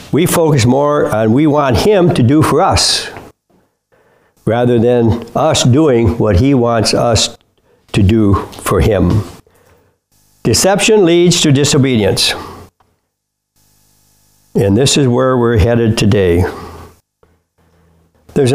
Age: 60-79